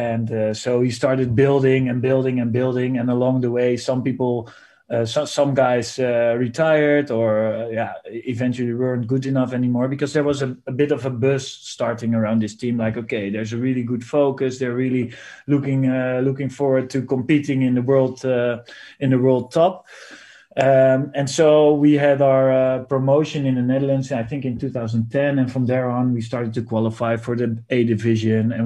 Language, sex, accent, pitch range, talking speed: English, male, Dutch, 120-135 Hz, 195 wpm